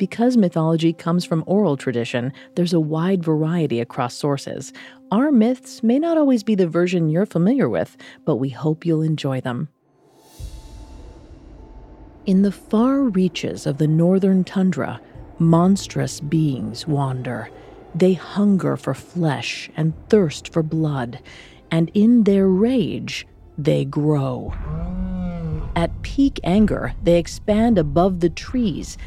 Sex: female